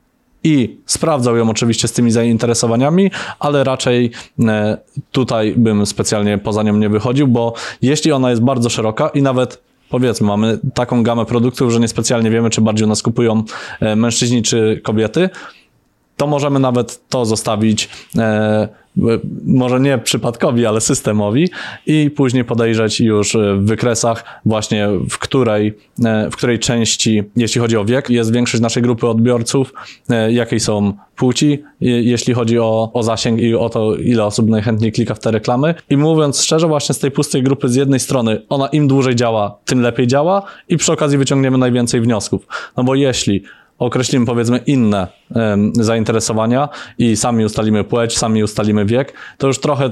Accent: native